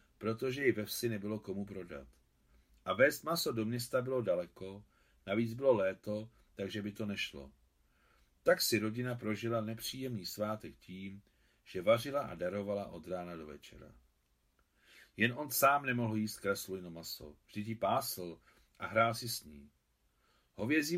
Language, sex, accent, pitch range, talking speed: Czech, male, native, 90-120 Hz, 145 wpm